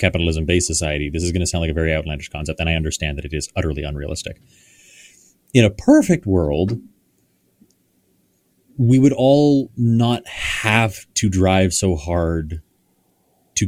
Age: 30-49